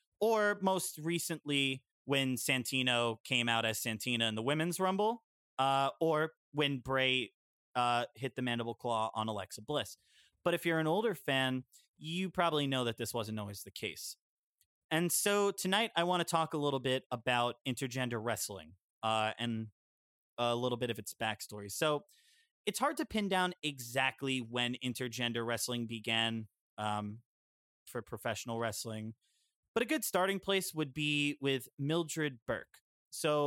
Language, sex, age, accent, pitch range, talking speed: English, male, 30-49, American, 115-155 Hz, 155 wpm